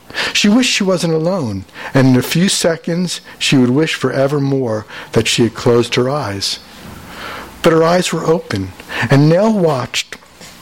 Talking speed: 160 wpm